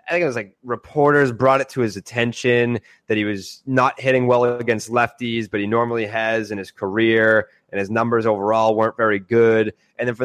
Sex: male